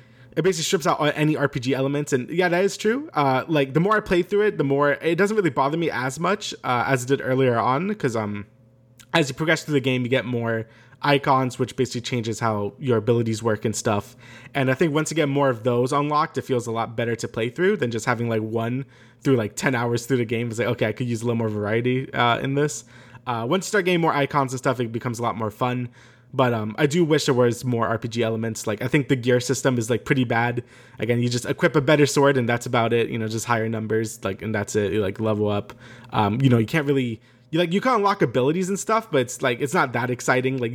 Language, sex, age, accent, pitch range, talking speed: English, male, 20-39, American, 115-145 Hz, 265 wpm